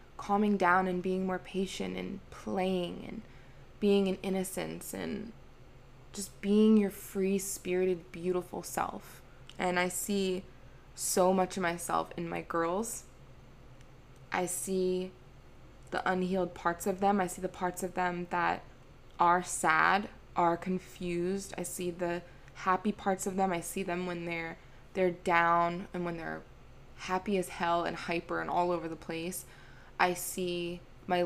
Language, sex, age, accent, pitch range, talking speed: English, female, 20-39, American, 165-190 Hz, 150 wpm